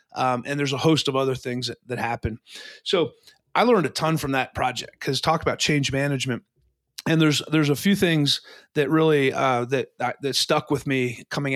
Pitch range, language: 130-155 Hz, English